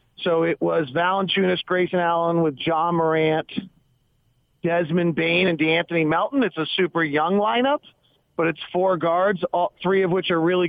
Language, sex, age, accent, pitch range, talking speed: English, male, 40-59, American, 150-185 Hz, 165 wpm